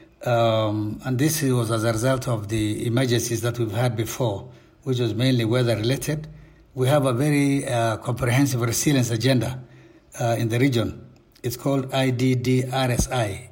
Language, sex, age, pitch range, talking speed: English, male, 60-79, 120-140 Hz, 145 wpm